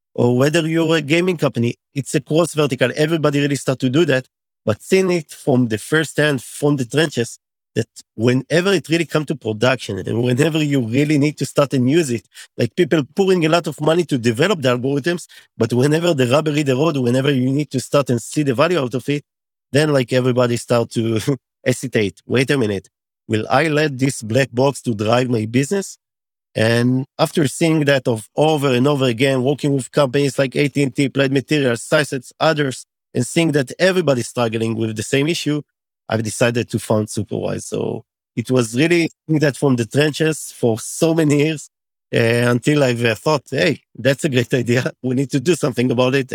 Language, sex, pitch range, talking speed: English, male, 120-155 Hz, 200 wpm